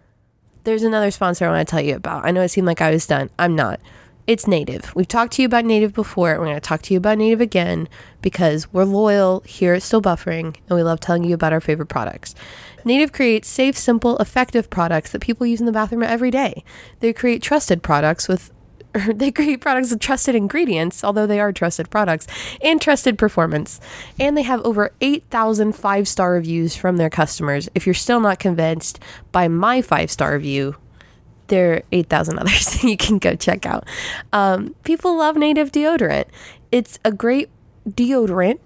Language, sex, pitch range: English, female, 175-240 Hz